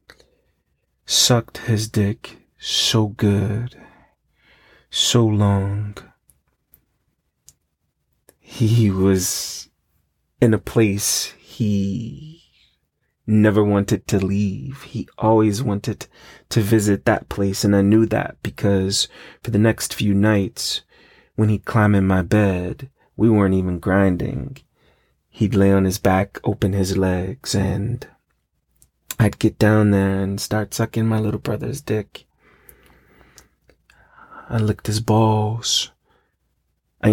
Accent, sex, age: American, male, 30-49